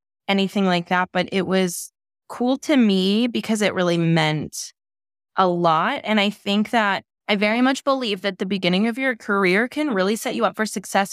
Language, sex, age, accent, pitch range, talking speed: English, female, 20-39, American, 170-215 Hz, 195 wpm